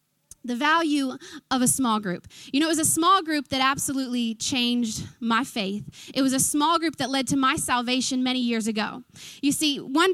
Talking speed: 200 wpm